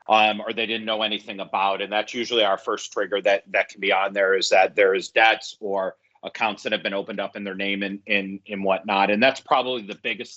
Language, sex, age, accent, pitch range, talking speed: English, male, 40-59, American, 100-120 Hz, 255 wpm